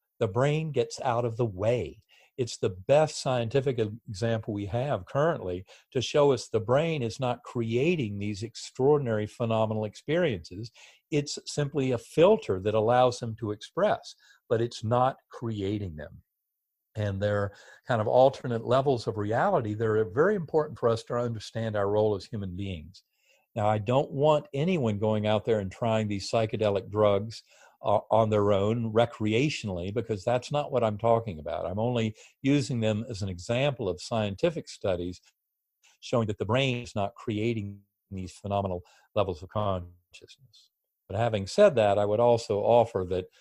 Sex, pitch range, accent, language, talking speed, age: male, 100-125 Hz, American, English, 160 wpm, 50-69